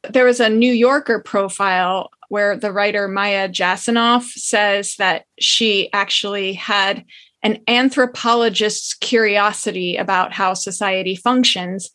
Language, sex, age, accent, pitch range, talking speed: English, female, 20-39, American, 200-235 Hz, 115 wpm